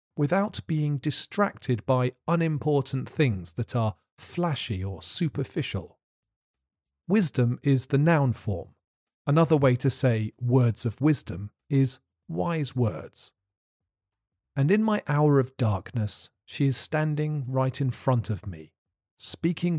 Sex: male